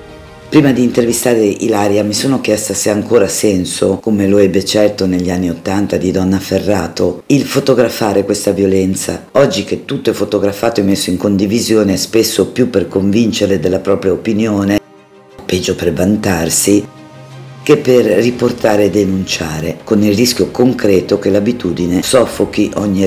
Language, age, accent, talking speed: Italian, 50-69, native, 150 wpm